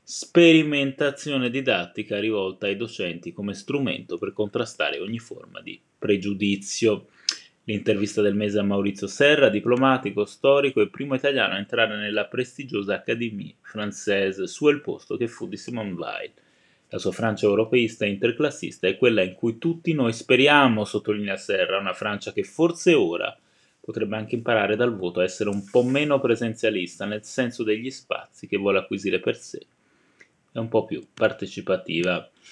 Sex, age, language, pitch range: male, 30-49, Italian, 105-135 Hz